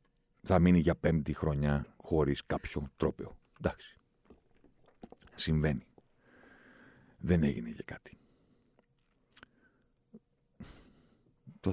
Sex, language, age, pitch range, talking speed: male, Greek, 50-69, 75-100 Hz, 75 wpm